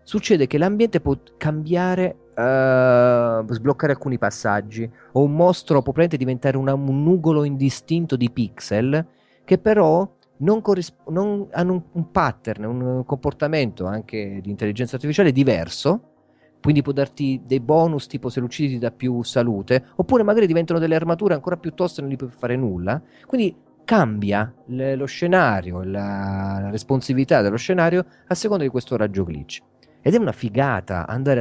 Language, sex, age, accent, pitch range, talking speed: Italian, male, 30-49, native, 105-145 Hz, 160 wpm